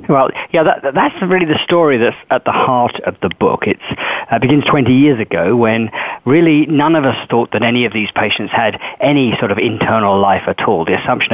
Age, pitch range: 40-59, 115-150 Hz